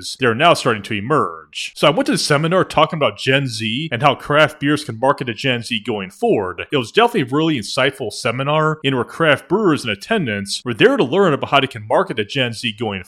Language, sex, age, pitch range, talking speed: English, male, 30-49, 110-160 Hz, 245 wpm